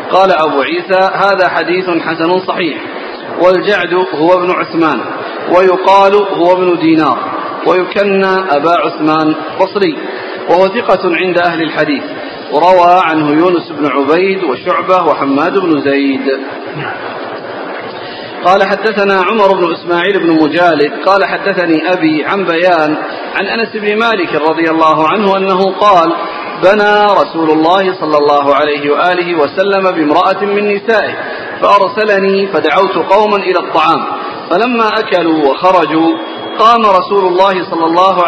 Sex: male